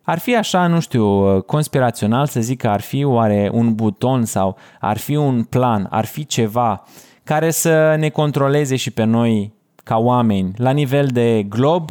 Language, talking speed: Romanian, 175 wpm